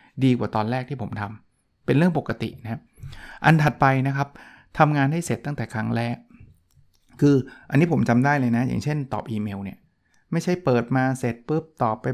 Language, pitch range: Thai, 115-145 Hz